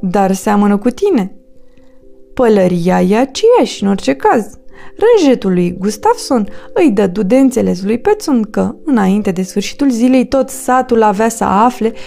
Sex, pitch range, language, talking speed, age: female, 205-270 Hz, Romanian, 140 wpm, 20-39